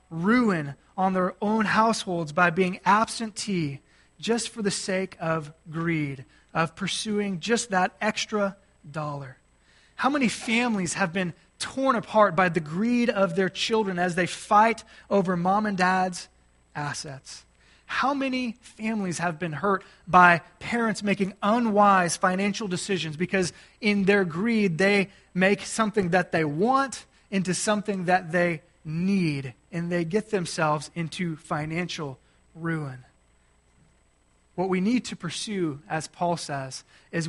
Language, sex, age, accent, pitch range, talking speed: English, male, 30-49, American, 165-210 Hz, 135 wpm